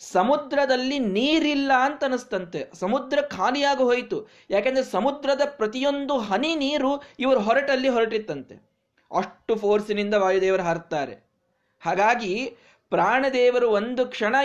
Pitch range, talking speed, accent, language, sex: 185-270 Hz, 90 wpm, native, Kannada, male